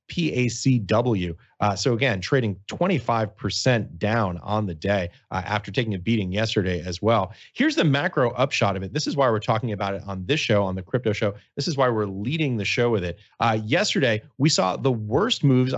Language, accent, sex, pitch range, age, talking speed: English, American, male, 105-135 Hz, 30-49, 205 wpm